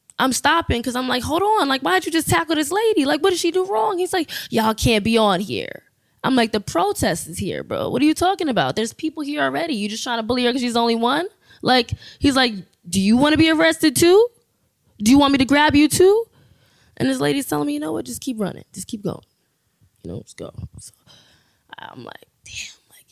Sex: female